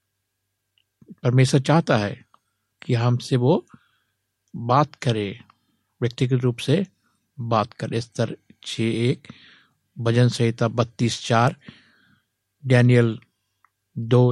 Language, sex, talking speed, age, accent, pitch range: Hindi, male, 90 wpm, 60-79, native, 110-130 Hz